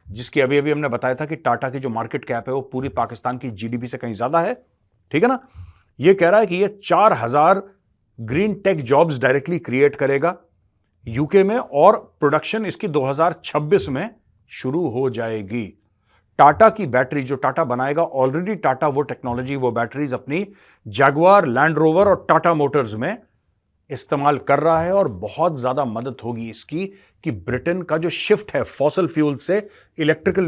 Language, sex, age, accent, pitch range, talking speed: Hindi, male, 40-59, native, 115-165 Hz, 170 wpm